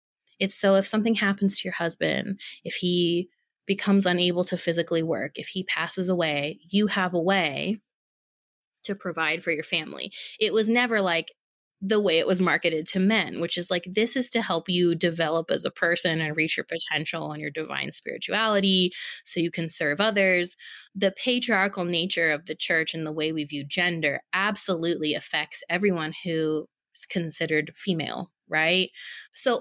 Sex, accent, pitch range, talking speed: female, American, 165-210 Hz, 170 wpm